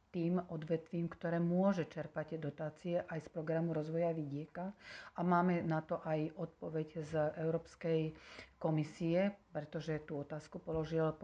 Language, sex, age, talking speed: Slovak, female, 40-59, 130 wpm